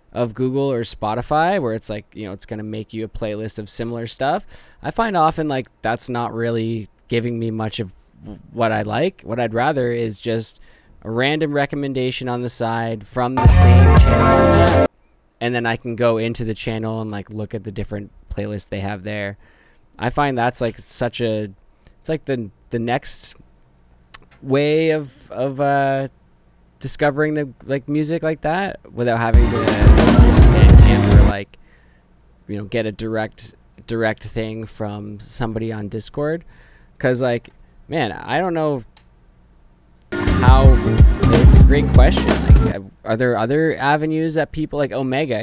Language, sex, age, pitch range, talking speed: English, male, 10-29, 90-125 Hz, 160 wpm